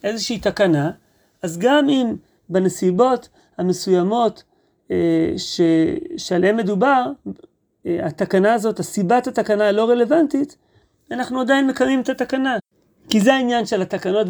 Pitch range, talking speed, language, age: 195-255 Hz, 110 wpm, Hebrew, 30-49